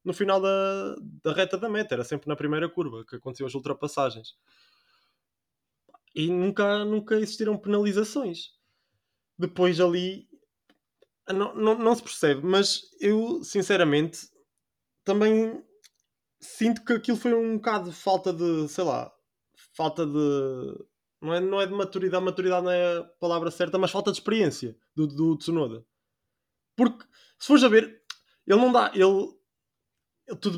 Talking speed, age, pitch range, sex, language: 145 wpm, 20-39, 155-205 Hz, male, Portuguese